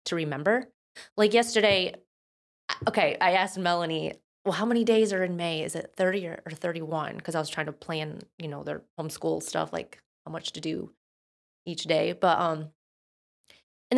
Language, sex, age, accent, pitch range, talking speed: English, female, 20-39, American, 160-205 Hz, 175 wpm